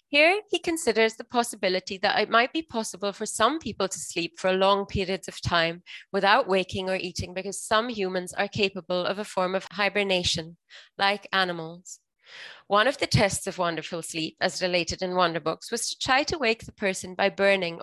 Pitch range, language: 185-235 Hz, English